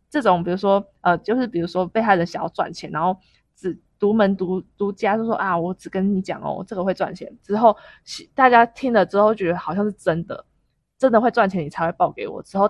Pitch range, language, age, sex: 180-220 Hz, Chinese, 20-39, female